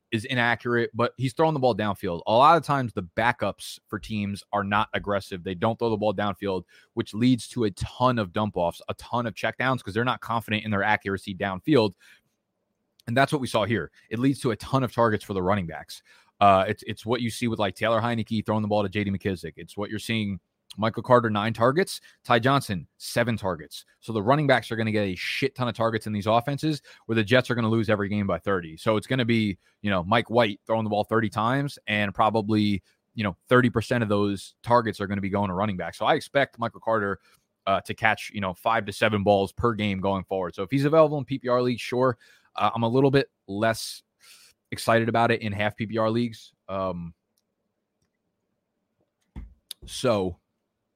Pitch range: 100-120 Hz